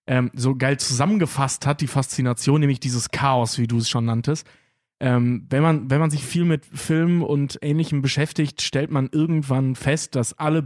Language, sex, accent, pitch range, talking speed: German, male, German, 125-150 Hz, 185 wpm